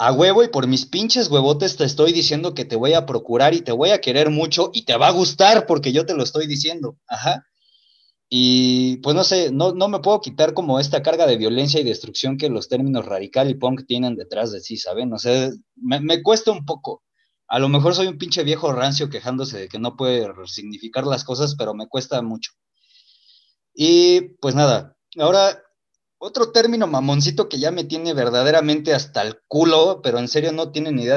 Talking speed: 210 wpm